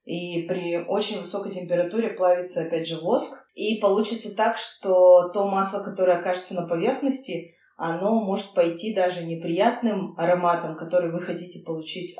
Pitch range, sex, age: 170-210 Hz, female, 20-39